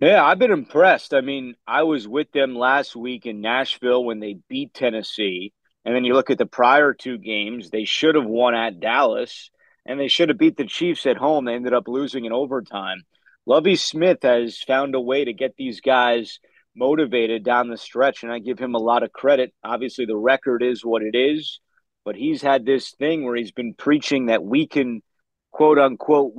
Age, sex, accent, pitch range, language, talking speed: 30-49, male, American, 120-145 Hz, English, 205 wpm